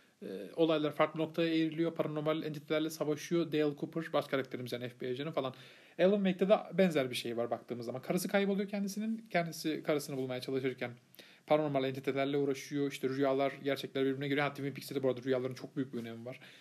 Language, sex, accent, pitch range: Turkish, male, native, 130-155 Hz